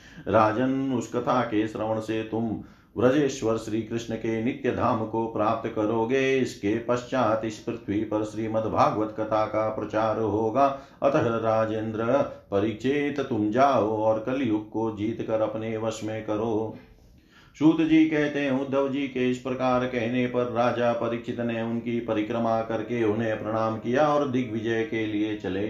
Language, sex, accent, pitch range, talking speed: Hindi, male, native, 110-125 Hz, 150 wpm